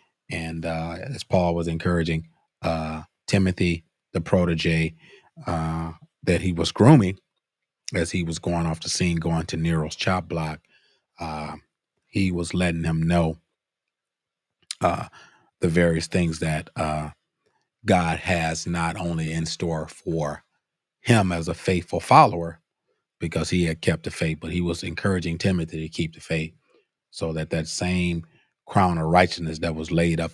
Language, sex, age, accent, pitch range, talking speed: English, male, 30-49, American, 80-90 Hz, 150 wpm